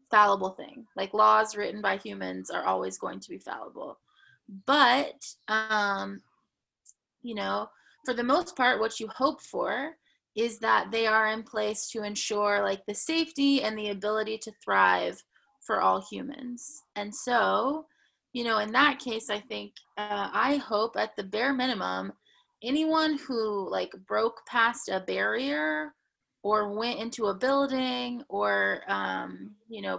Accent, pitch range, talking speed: American, 205-270 Hz, 150 wpm